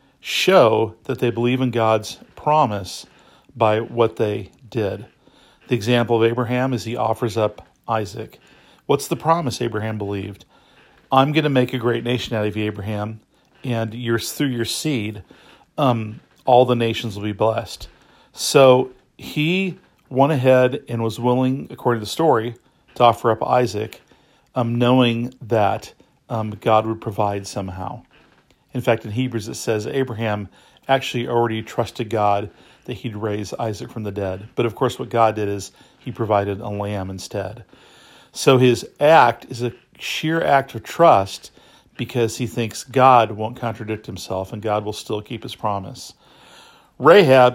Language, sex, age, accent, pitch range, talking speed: English, male, 40-59, American, 105-125 Hz, 160 wpm